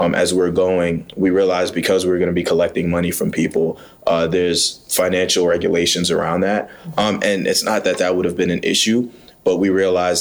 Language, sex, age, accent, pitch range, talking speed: English, male, 20-39, American, 85-95 Hz, 205 wpm